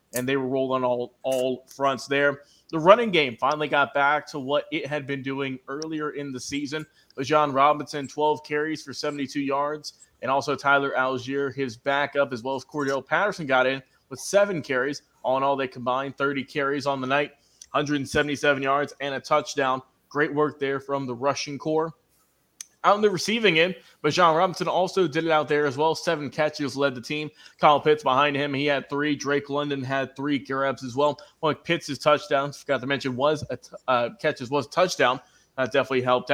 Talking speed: 200 wpm